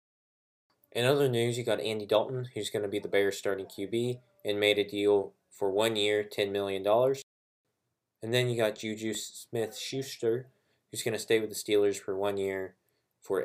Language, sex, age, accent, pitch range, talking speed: English, male, 20-39, American, 100-120 Hz, 185 wpm